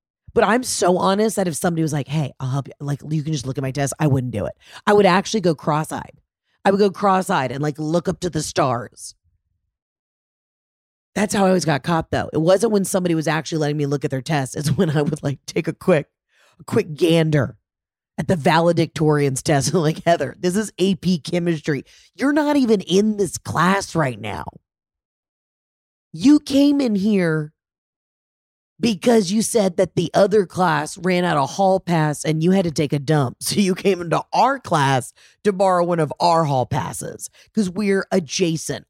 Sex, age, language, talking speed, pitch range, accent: female, 30-49, English, 200 wpm, 140-190 Hz, American